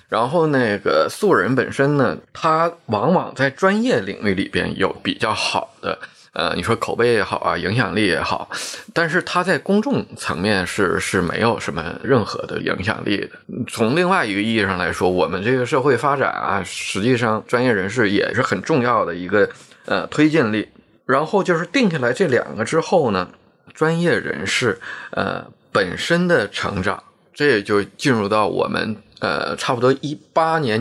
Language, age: Chinese, 20-39